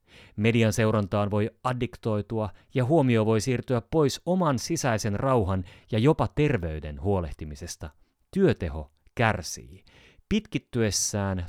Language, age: Finnish, 30-49